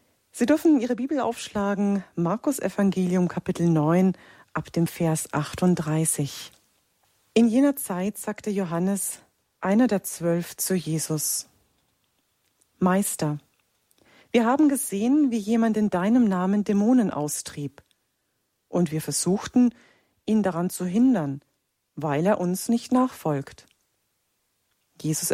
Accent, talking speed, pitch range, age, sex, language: German, 110 wpm, 160-220 Hz, 40-59, female, German